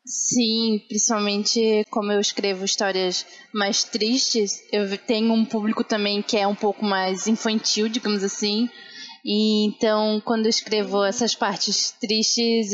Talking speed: 135 wpm